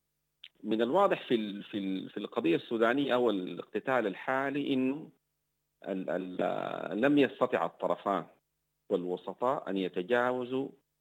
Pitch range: 105-150 Hz